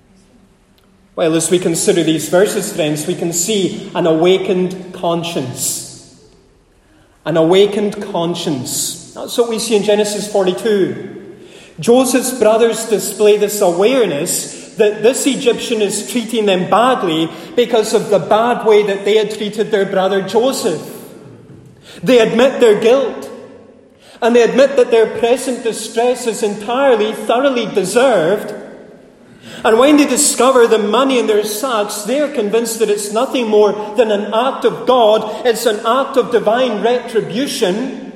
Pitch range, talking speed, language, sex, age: 190-235 Hz, 140 wpm, English, male, 30-49